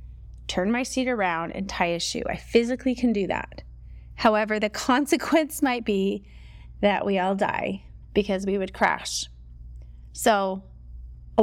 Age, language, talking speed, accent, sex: 30-49, English, 145 wpm, American, female